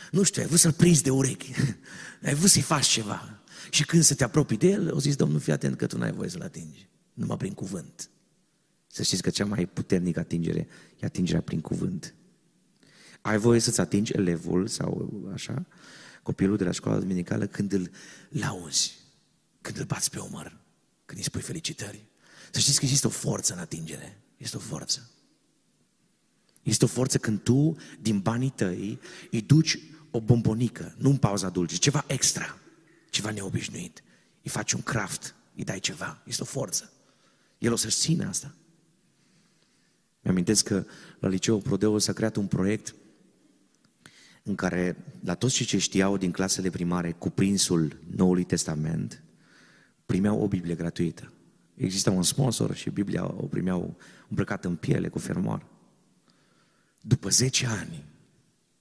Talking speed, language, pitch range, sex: 160 wpm, Romanian, 95-140 Hz, male